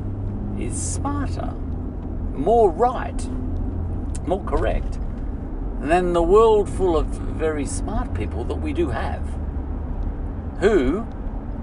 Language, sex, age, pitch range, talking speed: English, male, 50-69, 80-95 Hz, 100 wpm